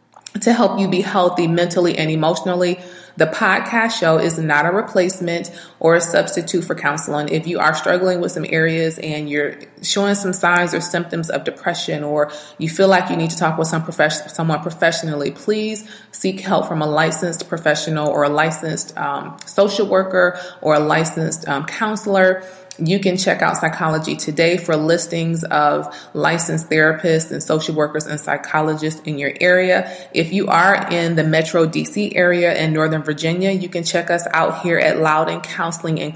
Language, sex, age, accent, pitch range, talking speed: English, female, 30-49, American, 155-185 Hz, 180 wpm